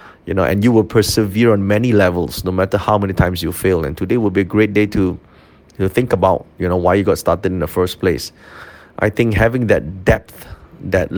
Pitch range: 95-115 Hz